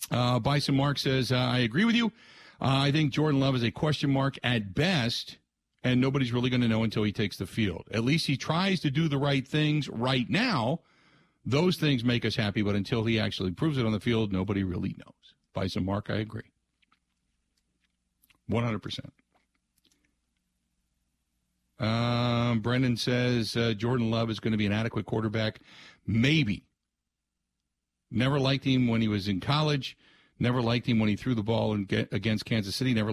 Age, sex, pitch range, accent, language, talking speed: 50-69, male, 95-130 Hz, American, English, 180 wpm